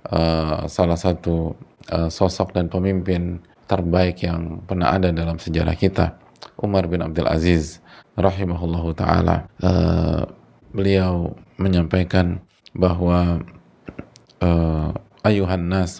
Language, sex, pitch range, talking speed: Indonesian, male, 85-95 Hz, 95 wpm